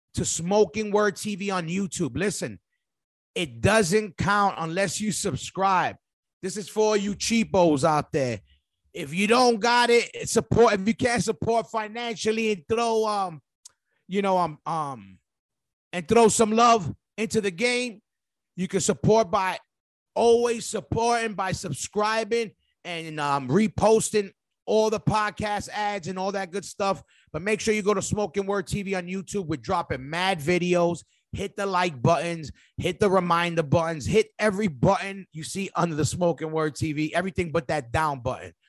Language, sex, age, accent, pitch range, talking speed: English, male, 30-49, American, 155-210 Hz, 160 wpm